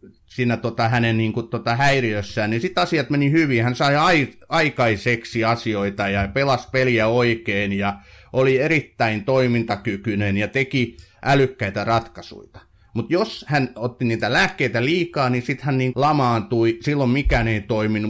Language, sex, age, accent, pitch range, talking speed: Finnish, male, 30-49, native, 105-130 Hz, 145 wpm